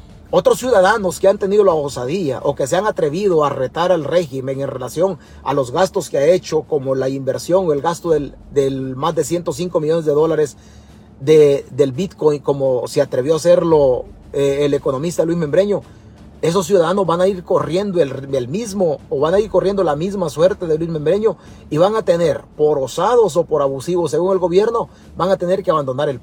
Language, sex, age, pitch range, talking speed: Spanish, male, 40-59, 145-225 Hz, 205 wpm